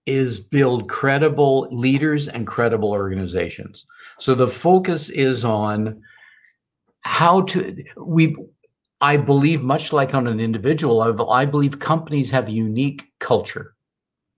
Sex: male